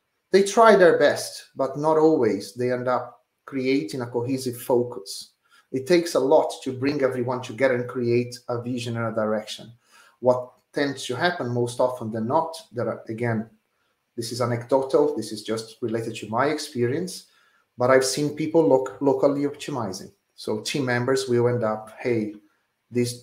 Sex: male